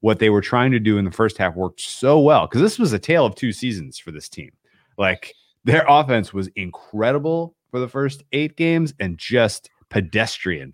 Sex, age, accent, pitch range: male, 30-49, American, 90-125 Hz